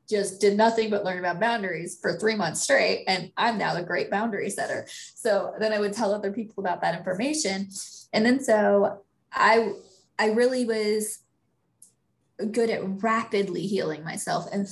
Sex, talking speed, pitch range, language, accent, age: female, 165 wpm, 195-225 Hz, English, American, 20-39